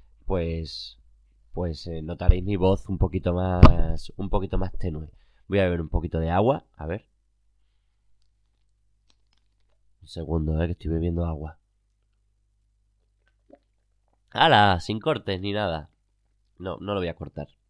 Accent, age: Spanish, 20-39